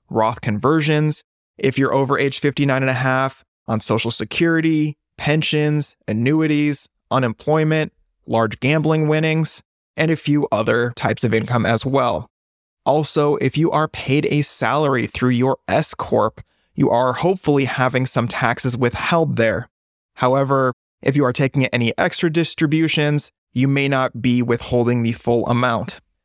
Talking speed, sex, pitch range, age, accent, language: 140 wpm, male, 125-155 Hz, 20-39, American, English